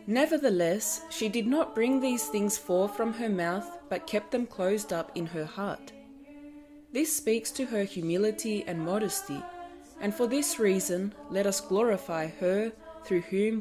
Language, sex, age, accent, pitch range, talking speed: English, female, 20-39, Australian, 180-250 Hz, 160 wpm